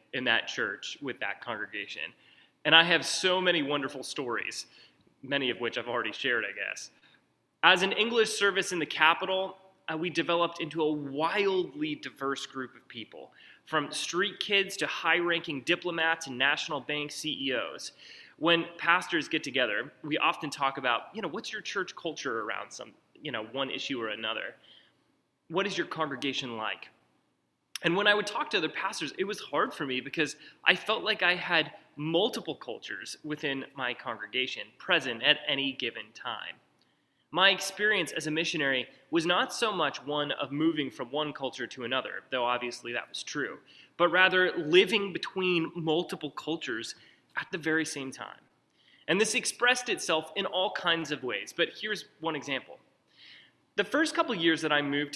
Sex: male